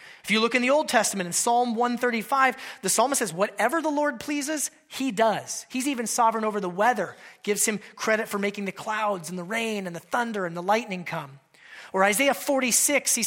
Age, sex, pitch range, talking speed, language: 30-49, male, 210-255 Hz, 210 wpm, English